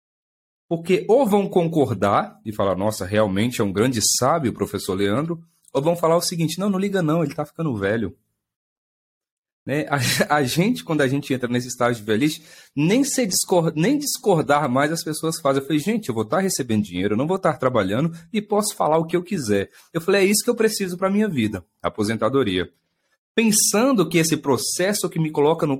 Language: Portuguese